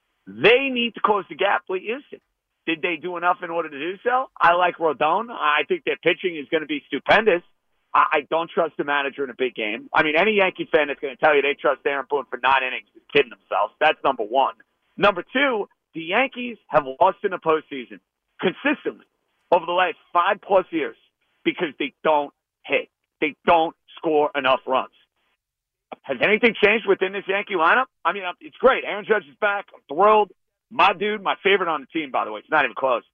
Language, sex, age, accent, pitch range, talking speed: English, male, 50-69, American, 160-215 Hz, 210 wpm